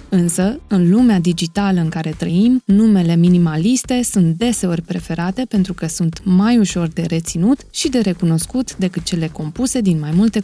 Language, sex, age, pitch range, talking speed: Romanian, female, 20-39, 175-225 Hz, 160 wpm